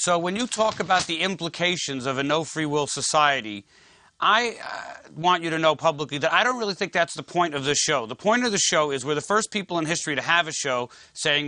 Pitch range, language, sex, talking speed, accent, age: 150-185 Hz, English, male, 245 wpm, American, 40-59